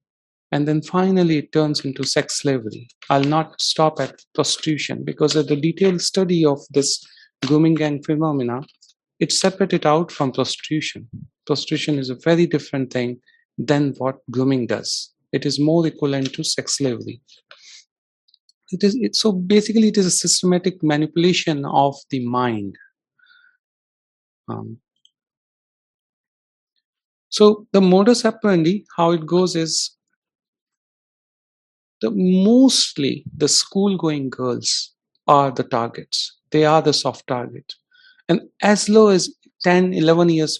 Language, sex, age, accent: English, male, 40-59, Indian